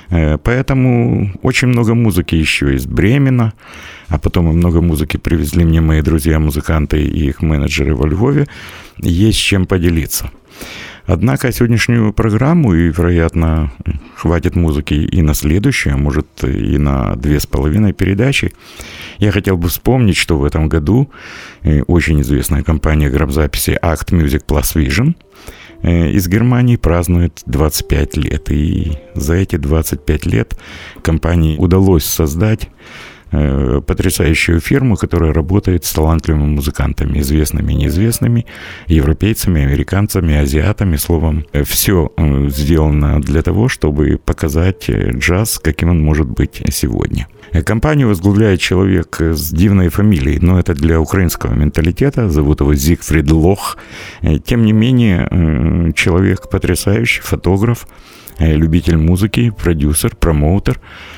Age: 50-69